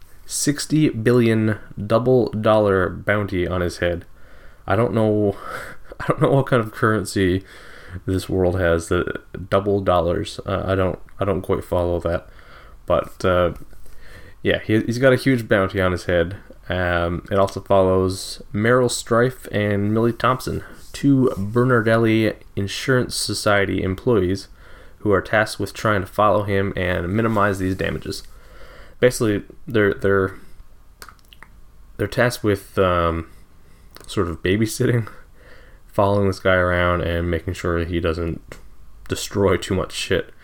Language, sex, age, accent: English, male, 20-39, American